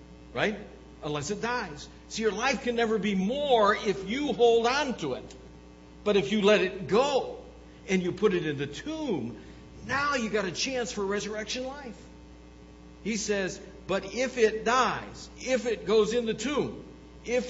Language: English